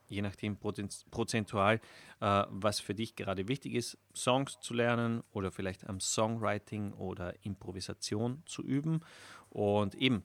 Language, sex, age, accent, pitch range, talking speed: German, male, 30-49, German, 100-125 Hz, 130 wpm